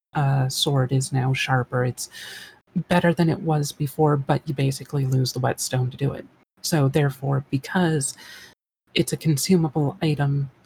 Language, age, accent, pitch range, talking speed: English, 30-49, American, 135-170 Hz, 150 wpm